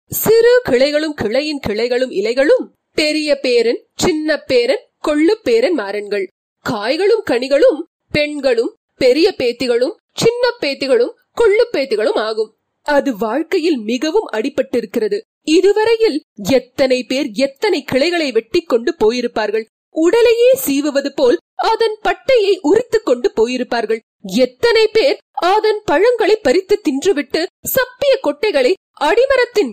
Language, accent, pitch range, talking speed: Tamil, native, 270-430 Hz, 105 wpm